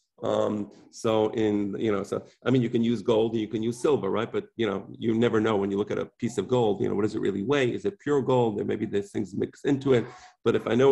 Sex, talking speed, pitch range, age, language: male, 290 wpm, 105-130 Hz, 40-59, English